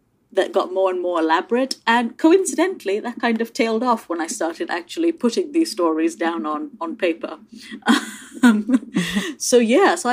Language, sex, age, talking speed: English, female, 30-49, 165 wpm